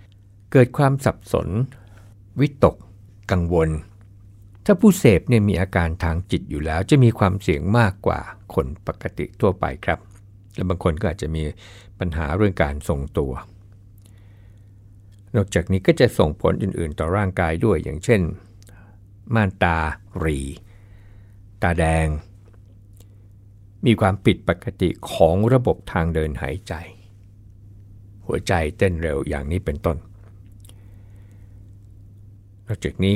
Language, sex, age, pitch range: Thai, male, 60-79, 85-100 Hz